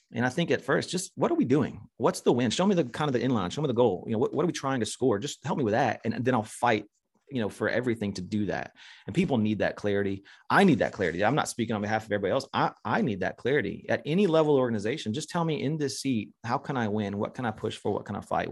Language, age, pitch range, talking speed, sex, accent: English, 30-49, 100-115 Hz, 310 wpm, male, American